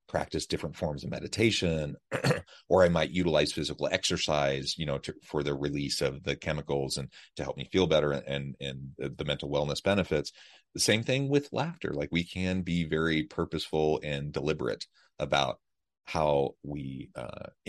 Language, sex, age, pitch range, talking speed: English, male, 30-49, 70-80 Hz, 175 wpm